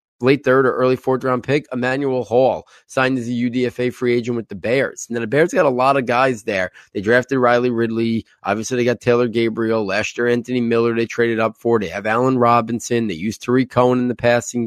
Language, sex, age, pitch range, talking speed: English, male, 20-39, 115-125 Hz, 225 wpm